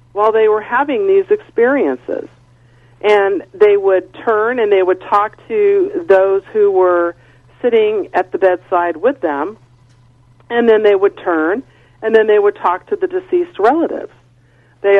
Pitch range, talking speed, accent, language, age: 170-240 Hz, 155 wpm, American, English, 50-69